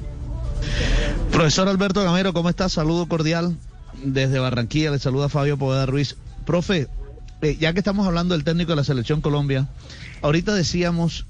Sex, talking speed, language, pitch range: male, 150 wpm, Spanish, 120-170 Hz